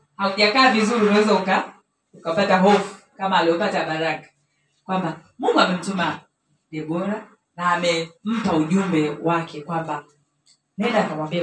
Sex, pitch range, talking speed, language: female, 165-225 Hz, 110 wpm, Swahili